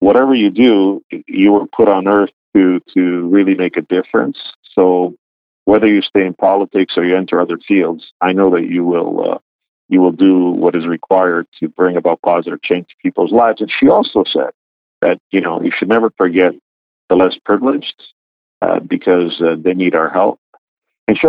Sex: male